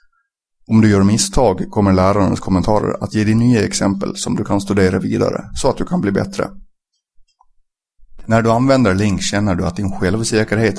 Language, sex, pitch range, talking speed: Swedish, male, 95-115 Hz, 180 wpm